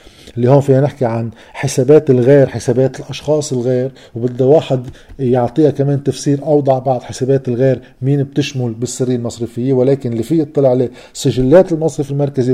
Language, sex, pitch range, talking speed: Arabic, male, 125-155 Hz, 150 wpm